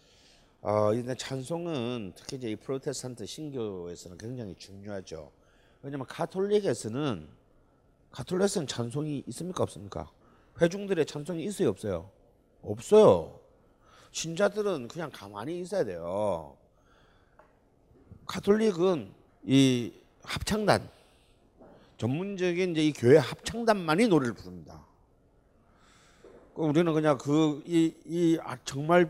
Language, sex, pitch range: Korean, male, 120-180 Hz